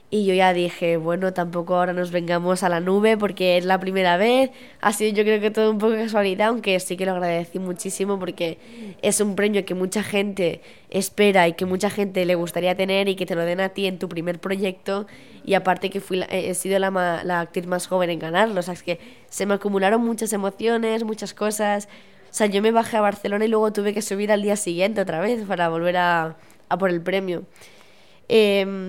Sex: female